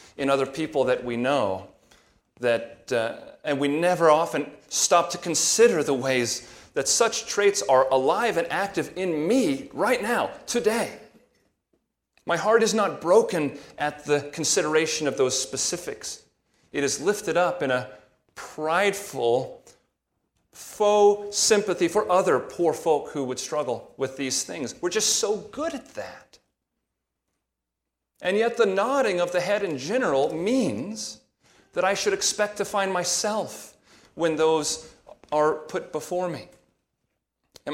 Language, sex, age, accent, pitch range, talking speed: English, male, 40-59, American, 140-205 Hz, 140 wpm